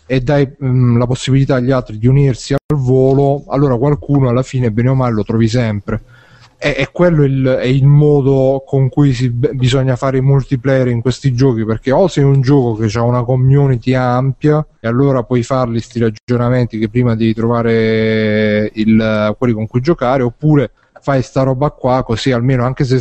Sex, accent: male, native